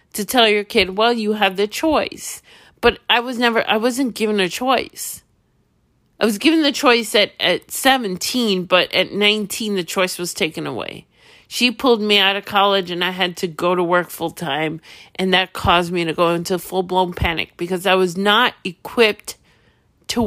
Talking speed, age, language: 195 wpm, 50-69, English